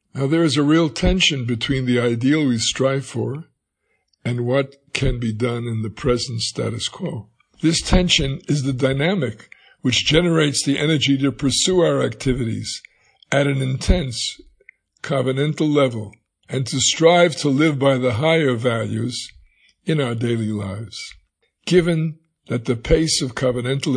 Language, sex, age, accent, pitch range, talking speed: English, male, 60-79, American, 125-160 Hz, 150 wpm